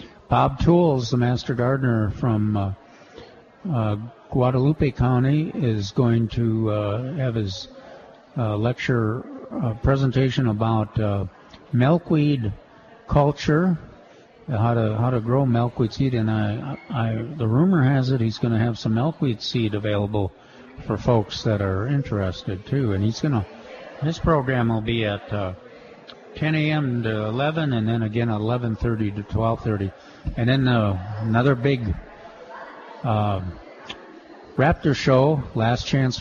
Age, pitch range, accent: 50-69, 105-130 Hz, American